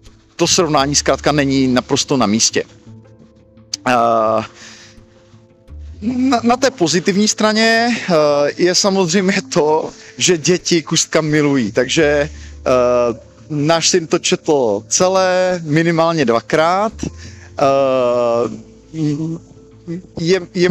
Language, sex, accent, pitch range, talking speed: Czech, male, native, 135-185 Hz, 80 wpm